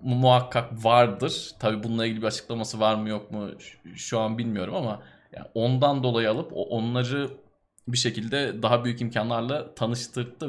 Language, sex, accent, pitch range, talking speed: Turkish, male, native, 110-140 Hz, 150 wpm